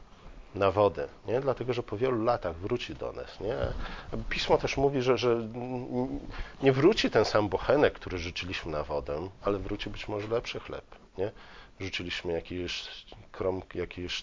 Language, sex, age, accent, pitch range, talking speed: Polish, male, 40-59, native, 95-125 Hz, 150 wpm